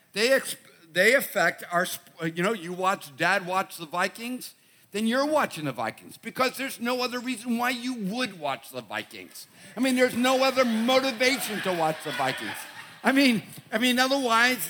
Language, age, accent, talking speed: English, 50-69, American, 185 wpm